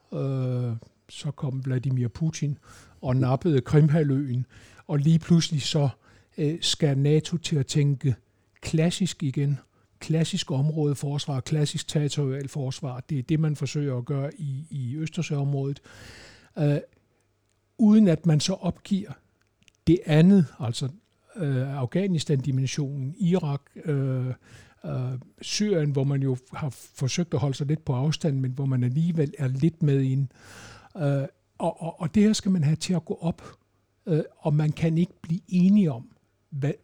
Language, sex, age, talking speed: Danish, male, 60-79, 140 wpm